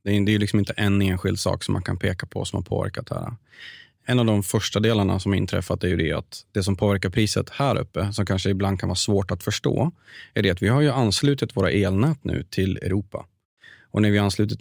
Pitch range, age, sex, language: 100-125 Hz, 30-49, male, Swedish